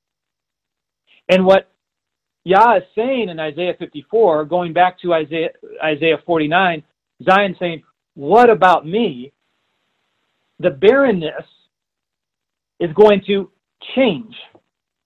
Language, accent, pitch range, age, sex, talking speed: English, American, 160-210 Hz, 40-59, male, 100 wpm